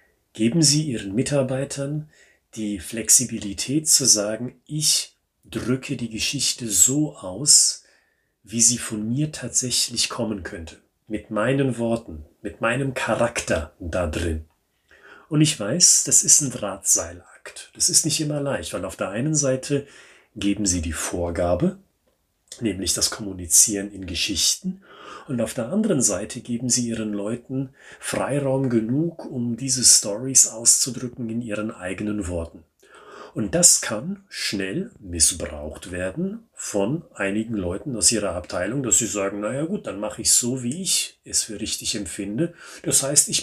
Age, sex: 40-59, male